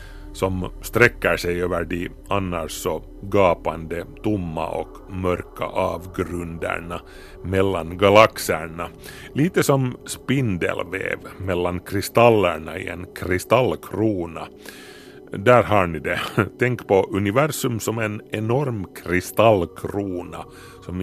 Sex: male